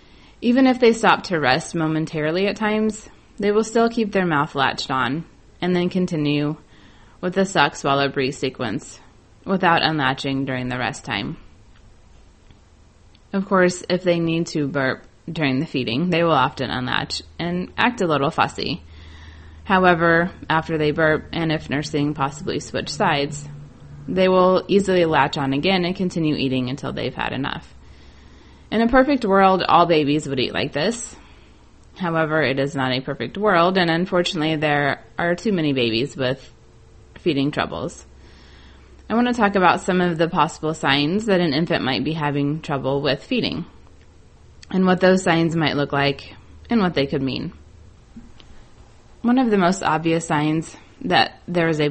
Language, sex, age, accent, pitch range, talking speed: English, female, 20-39, American, 130-180 Hz, 165 wpm